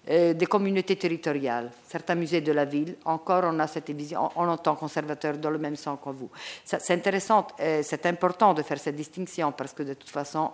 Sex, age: female, 50-69